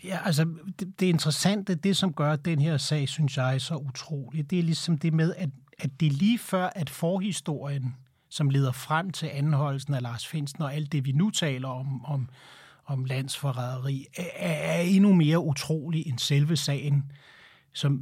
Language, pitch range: Danish, 135-165 Hz